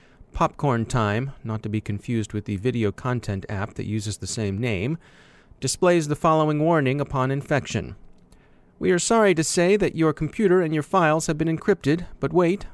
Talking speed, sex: 180 wpm, male